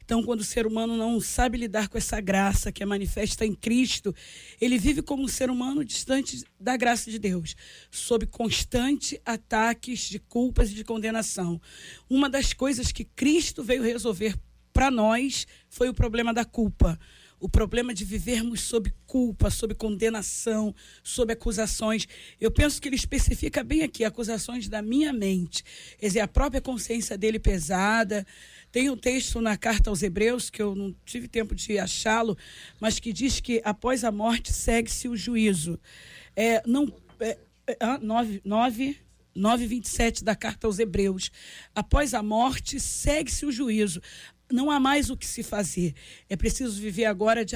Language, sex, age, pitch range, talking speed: Portuguese, female, 20-39, 215-255 Hz, 165 wpm